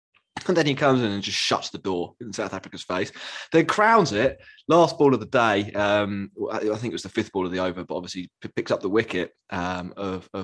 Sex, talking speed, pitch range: male, 235 wpm, 95-135 Hz